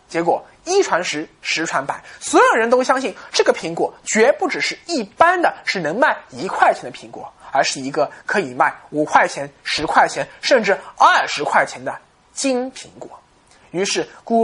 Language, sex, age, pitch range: Chinese, male, 20-39, 220-360 Hz